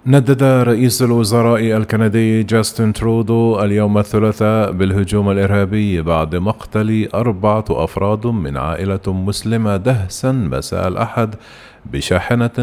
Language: Arabic